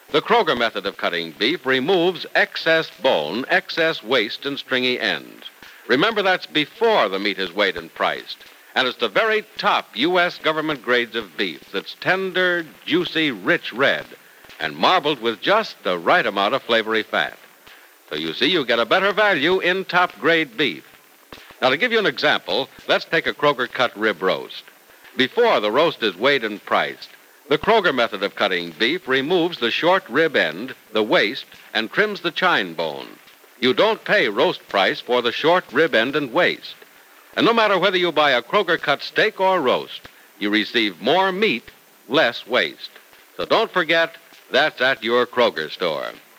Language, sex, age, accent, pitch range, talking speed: English, male, 60-79, American, 125-185 Hz, 175 wpm